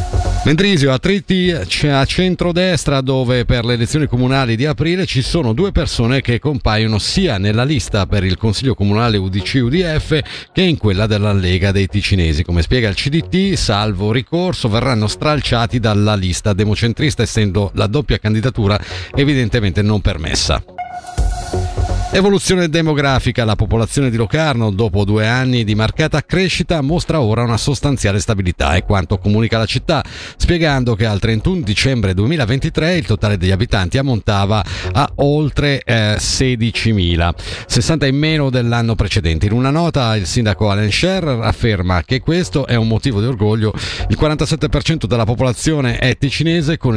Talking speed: 150 wpm